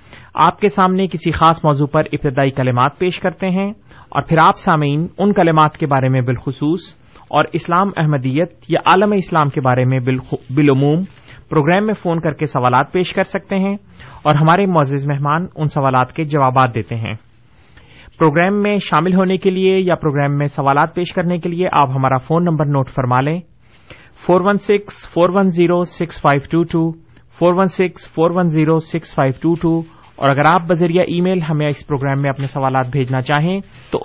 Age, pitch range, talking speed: 30-49, 140-175 Hz, 155 wpm